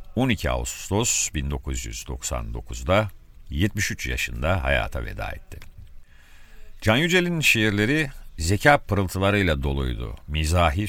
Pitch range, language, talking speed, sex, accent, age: 70-105 Hz, Turkish, 85 wpm, male, native, 50-69